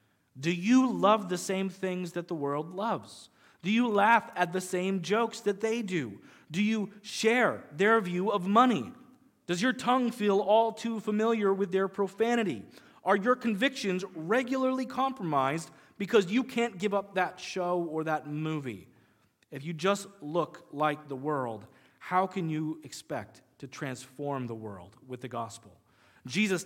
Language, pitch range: English, 135-200 Hz